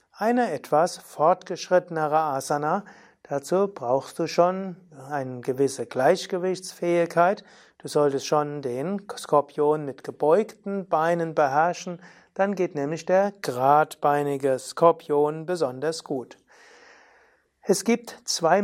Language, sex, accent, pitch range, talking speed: German, male, German, 150-185 Hz, 100 wpm